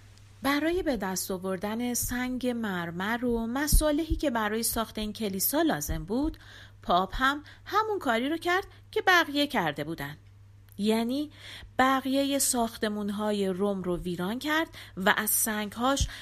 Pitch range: 175-290 Hz